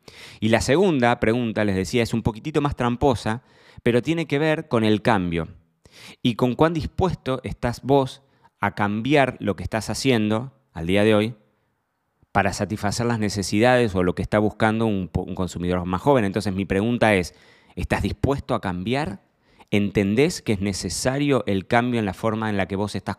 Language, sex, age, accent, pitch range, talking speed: Spanish, male, 20-39, Argentinian, 100-125 Hz, 180 wpm